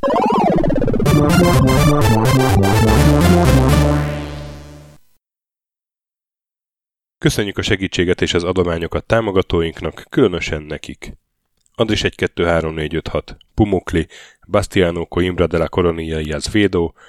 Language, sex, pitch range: Hungarian, male, 85-100 Hz